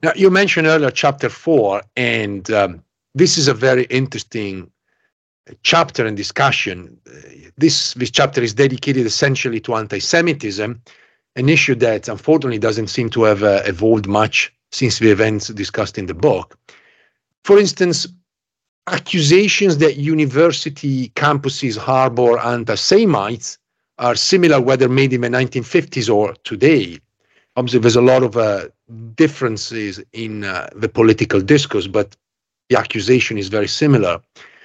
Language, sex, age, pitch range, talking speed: English, male, 50-69, 110-150 Hz, 135 wpm